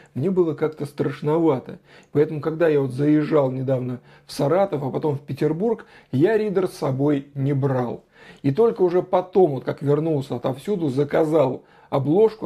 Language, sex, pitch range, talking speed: Russian, male, 145-190 Hz, 145 wpm